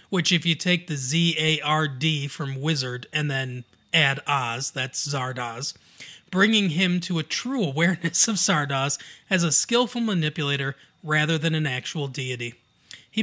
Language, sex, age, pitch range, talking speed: English, male, 30-49, 150-185 Hz, 145 wpm